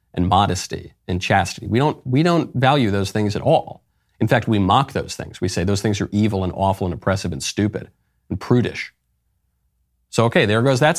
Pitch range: 95-125 Hz